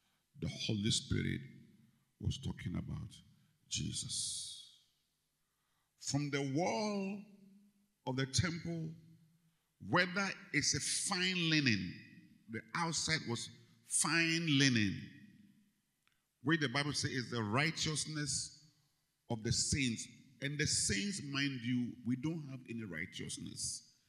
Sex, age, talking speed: male, 50-69, 105 wpm